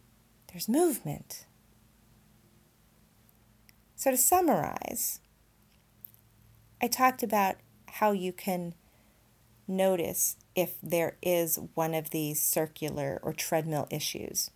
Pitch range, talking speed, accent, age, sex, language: 130-185 Hz, 90 wpm, American, 40-59, female, English